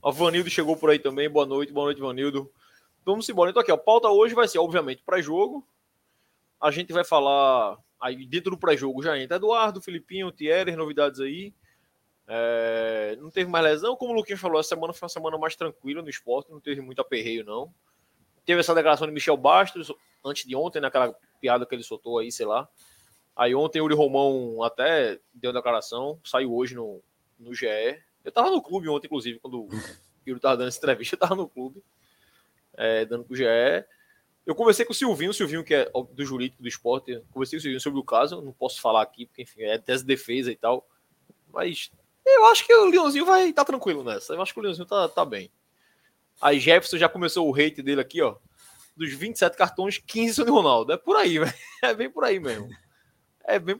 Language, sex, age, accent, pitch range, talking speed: Portuguese, male, 20-39, Brazilian, 135-200 Hz, 210 wpm